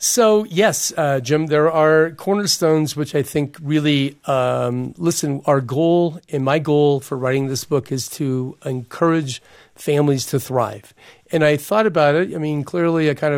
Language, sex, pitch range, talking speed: English, male, 135-160 Hz, 165 wpm